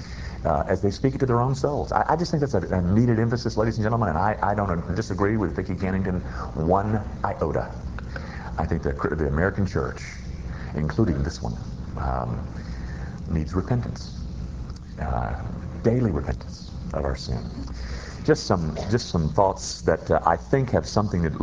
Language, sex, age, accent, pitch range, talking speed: English, male, 50-69, American, 70-110 Hz, 170 wpm